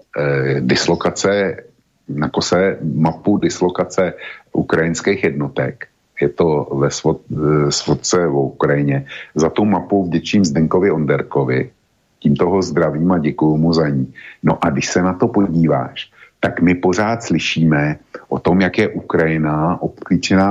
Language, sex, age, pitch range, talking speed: Slovak, male, 50-69, 75-90 Hz, 125 wpm